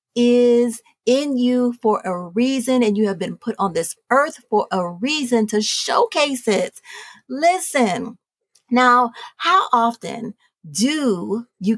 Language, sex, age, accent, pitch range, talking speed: English, female, 40-59, American, 210-255 Hz, 130 wpm